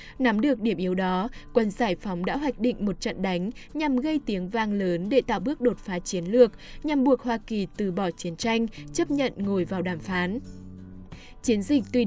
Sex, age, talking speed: female, 10-29, 215 wpm